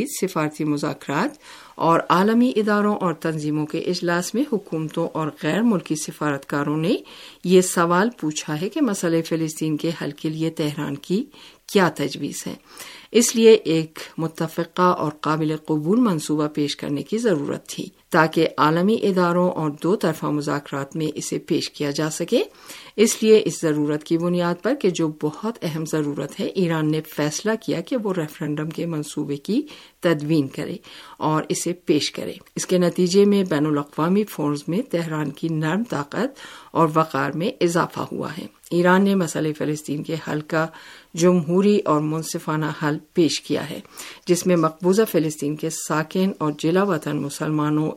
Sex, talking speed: female, 160 wpm